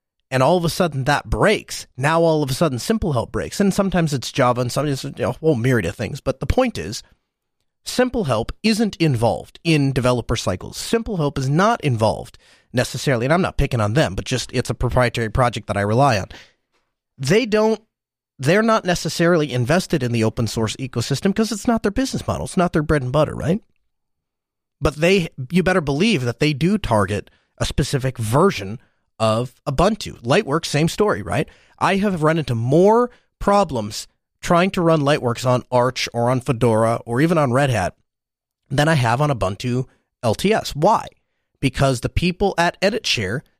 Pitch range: 125-175 Hz